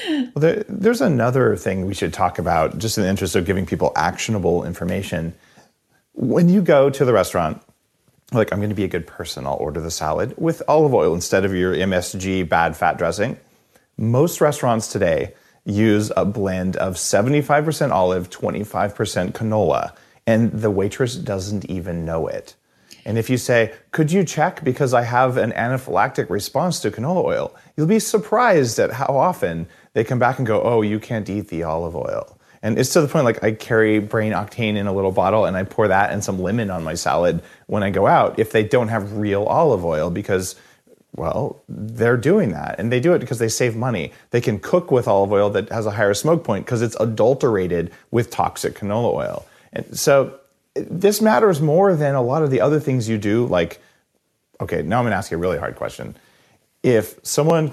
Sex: male